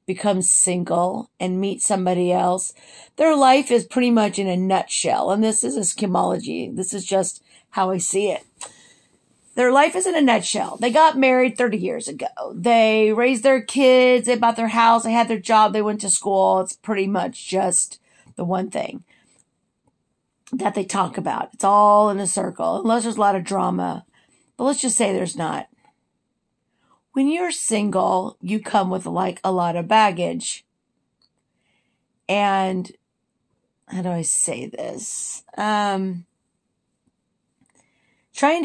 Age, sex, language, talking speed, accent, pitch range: 50-69, female, English, 155 wpm, American, 185-235 Hz